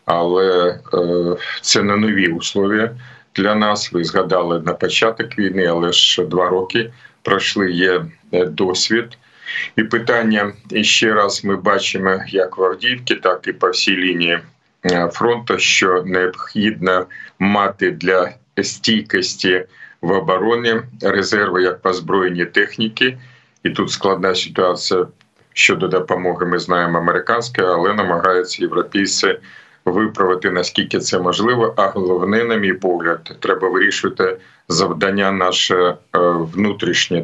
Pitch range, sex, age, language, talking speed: 90-110 Hz, male, 50-69, Ukrainian, 120 wpm